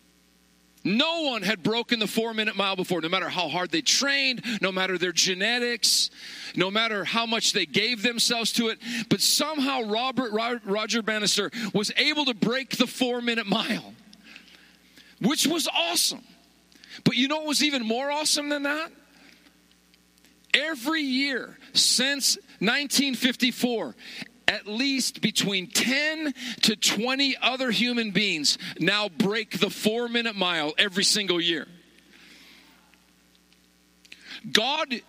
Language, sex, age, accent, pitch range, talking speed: English, male, 50-69, American, 195-255 Hz, 130 wpm